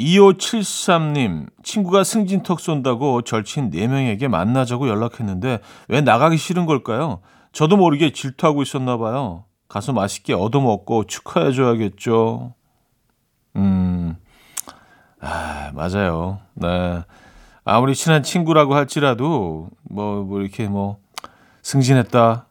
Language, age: Korean, 40-59